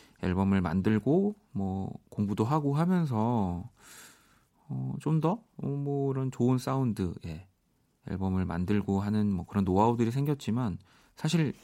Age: 40-59